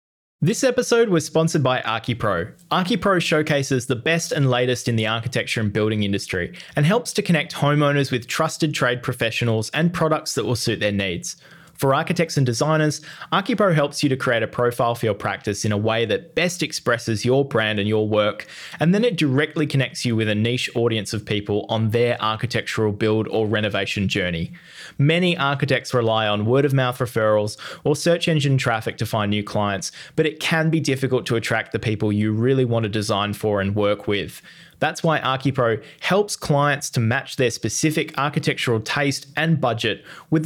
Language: English